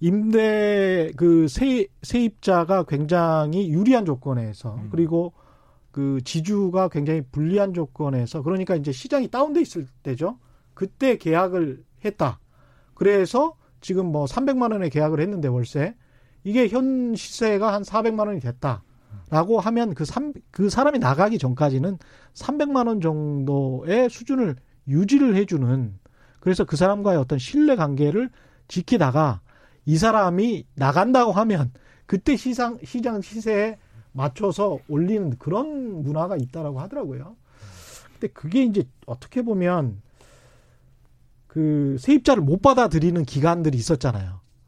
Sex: male